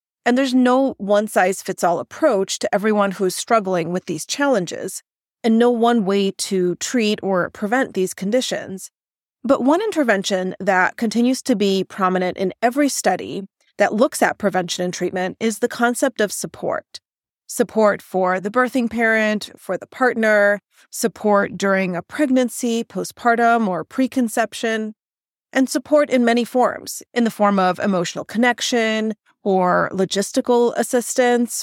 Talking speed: 140 wpm